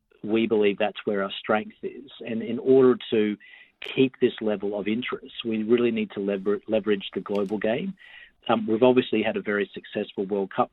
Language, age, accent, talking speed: English, 40-59, Australian, 190 wpm